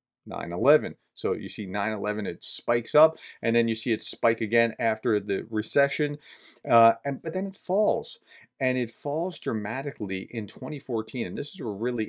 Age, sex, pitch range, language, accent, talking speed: 40-59, male, 105-140 Hz, English, American, 175 wpm